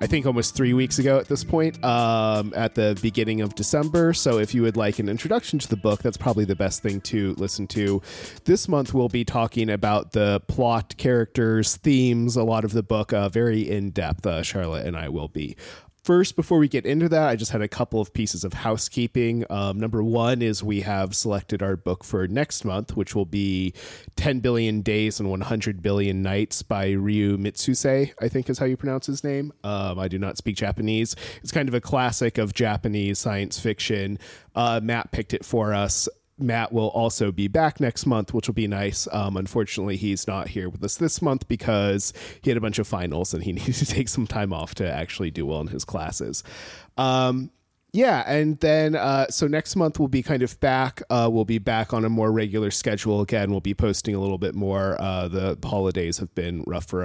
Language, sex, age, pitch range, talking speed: English, male, 30-49, 100-125 Hz, 215 wpm